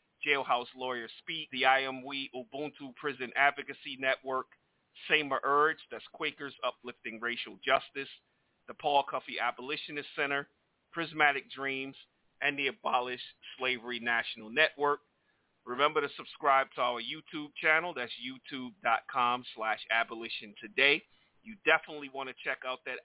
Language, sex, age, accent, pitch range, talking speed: English, male, 40-59, American, 125-150 Hz, 125 wpm